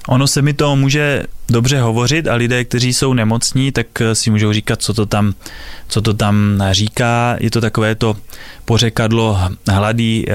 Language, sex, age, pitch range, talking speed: Slovak, male, 20-39, 115-140 Hz, 170 wpm